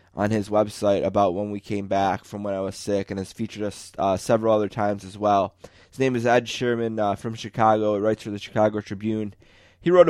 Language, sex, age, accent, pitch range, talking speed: English, male, 20-39, American, 100-115 Hz, 230 wpm